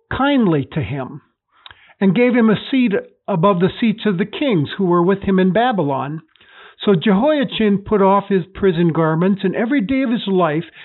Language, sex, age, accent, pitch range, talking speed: English, male, 60-79, American, 175-230 Hz, 185 wpm